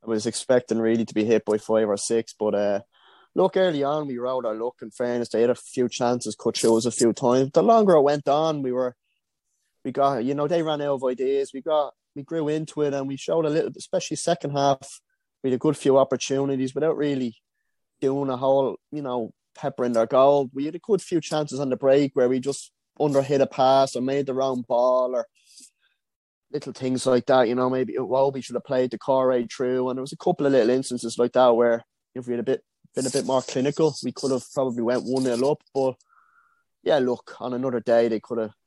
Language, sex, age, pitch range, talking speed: English, male, 20-39, 120-140 Hz, 240 wpm